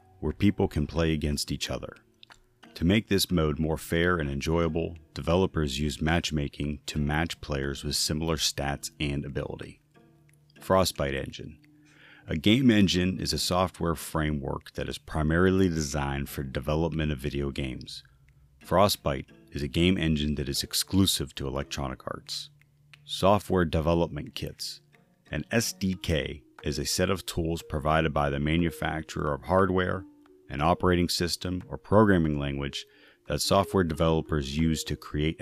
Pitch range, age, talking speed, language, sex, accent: 75-95 Hz, 30-49, 140 wpm, English, male, American